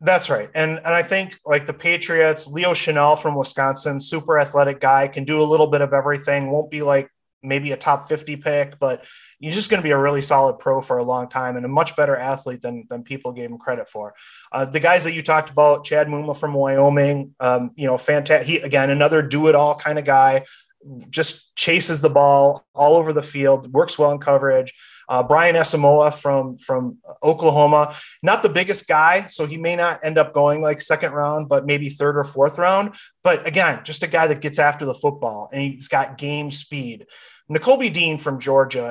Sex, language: male, English